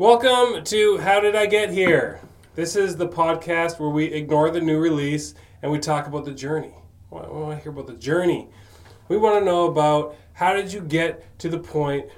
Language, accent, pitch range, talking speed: English, American, 135-165 Hz, 215 wpm